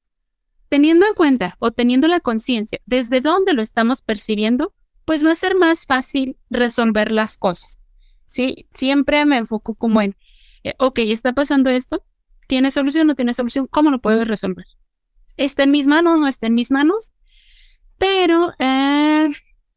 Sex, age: female, 20-39